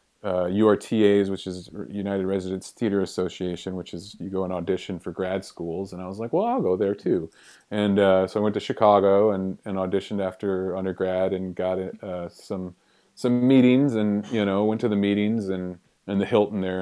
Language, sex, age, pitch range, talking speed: English, male, 30-49, 90-105 Hz, 200 wpm